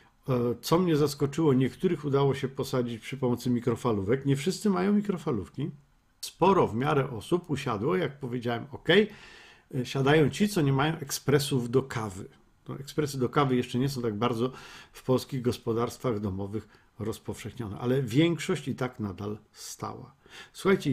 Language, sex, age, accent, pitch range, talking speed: Polish, male, 50-69, native, 115-145 Hz, 145 wpm